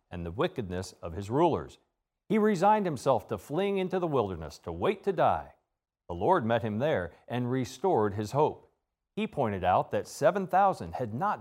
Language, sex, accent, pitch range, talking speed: English, male, American, 110-180 Hz, 180 wpm